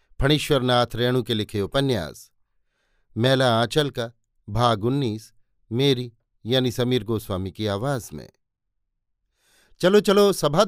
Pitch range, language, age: 110-140 Hz, Hindi, 50-69